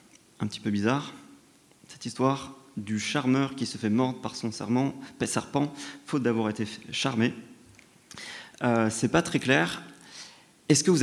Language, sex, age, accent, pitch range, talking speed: French, male, 30-49, French, 110-140 Hz, 150 wpm